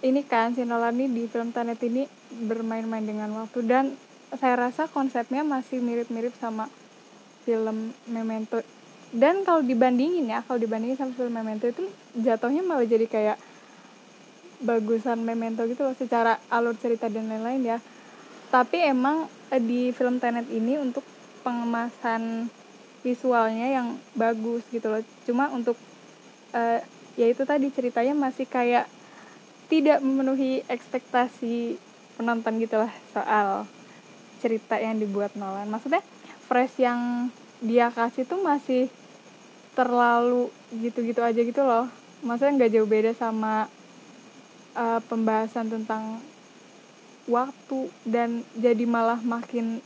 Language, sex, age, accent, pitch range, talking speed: Indonesian, female, 10-29, native, 230-260 Hz, 120 wpm